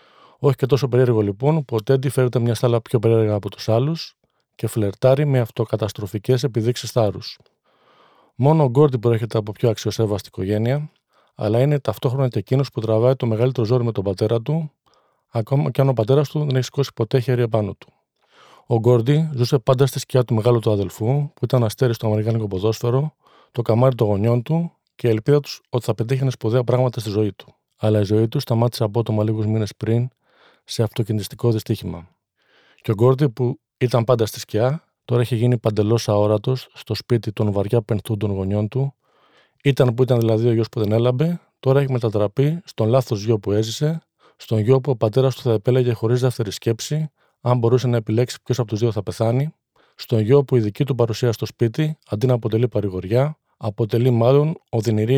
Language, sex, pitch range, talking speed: Greek, male, 110-135 Hz, 190 wpm